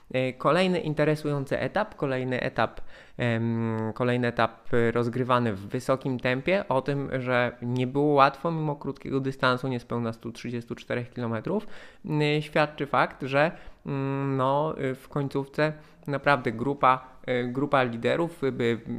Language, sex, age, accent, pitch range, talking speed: Polish, male, 20-39, native, 115-140 Hz, 105 wpm